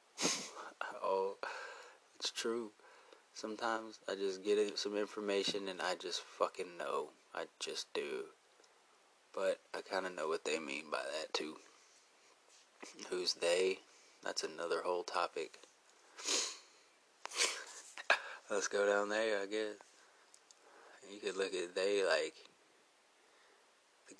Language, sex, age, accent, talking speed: English, male, 20-39, American, 120 wpm